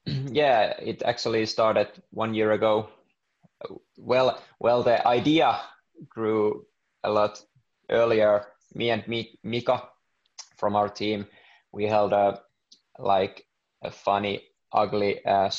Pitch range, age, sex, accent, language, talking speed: 100-110 Hz, 20-39, male, Finnish, English, 115 wpm